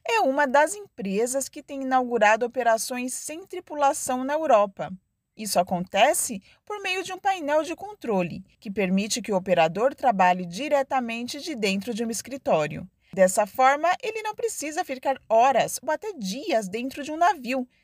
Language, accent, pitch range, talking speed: Portuguese, Brazilian, 195-290 Hz, 160 wpm